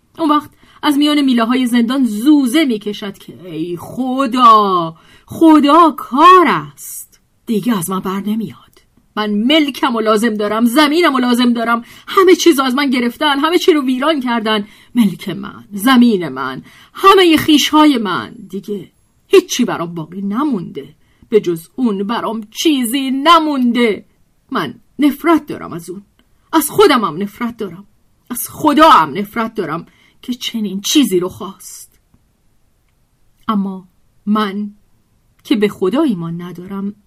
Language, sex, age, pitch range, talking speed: Persian, female, 40-59, 205-300 Hz, 135 wpm